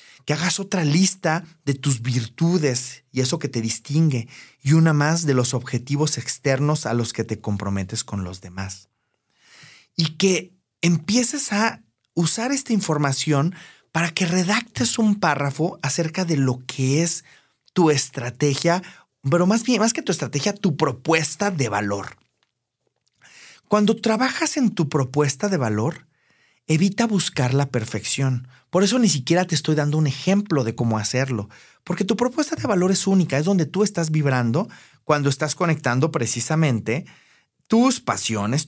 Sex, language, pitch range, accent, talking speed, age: male, Spanish, 125-185 Hz, Mexican, 150 wpm, 30-49